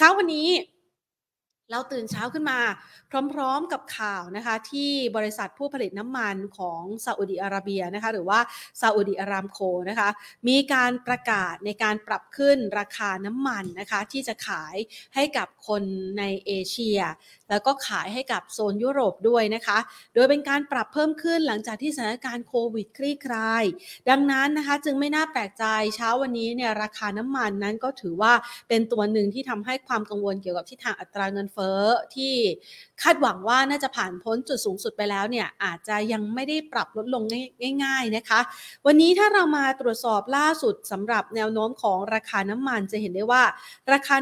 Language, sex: Thai, female